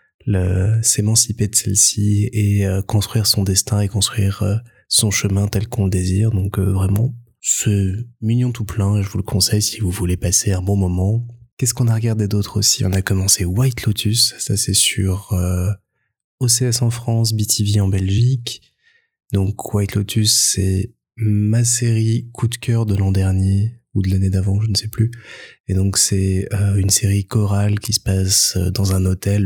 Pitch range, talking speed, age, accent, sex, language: 95-115 Hz, 185 wpm, 20-39, French, male, French